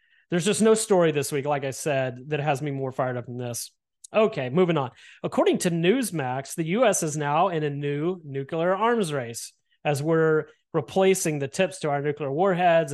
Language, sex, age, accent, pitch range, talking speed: English, male, 30-49, American, 140-180 Hz, 195 wpm